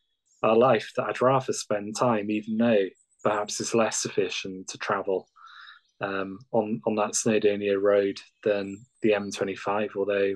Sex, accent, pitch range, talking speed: male, British, 100-115 Hz, 145 wpm